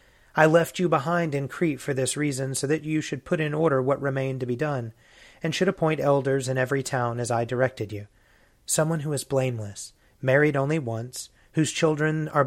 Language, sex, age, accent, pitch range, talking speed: English, male, 30-49, American, 125-150 Hz, 200 wpm